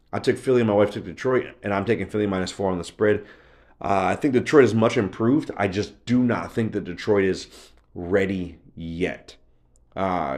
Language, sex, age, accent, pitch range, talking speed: English, male, 30-49, American, 90-105 Hz, 200 wpm